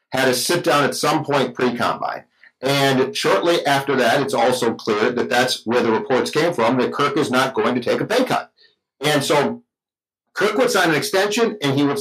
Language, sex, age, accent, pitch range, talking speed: English, male, 50-69, American, 125-170 Hz, 205 wpm